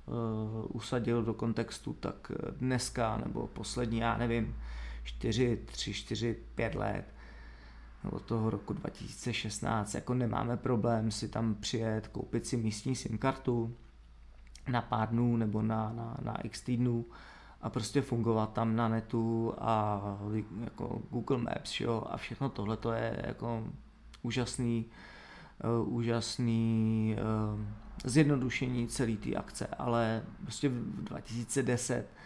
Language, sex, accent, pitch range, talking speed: Czech, male, native, 110-120 Hz, 125 wpm